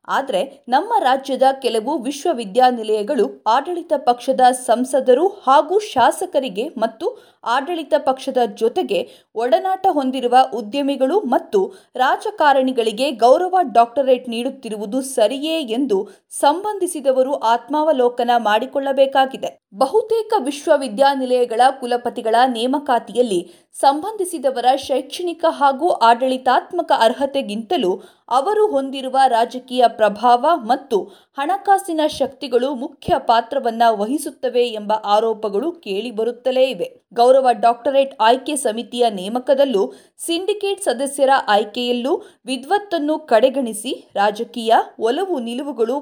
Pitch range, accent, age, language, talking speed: 240-315 Hz, native, 50-69, Kannada, 80 wpm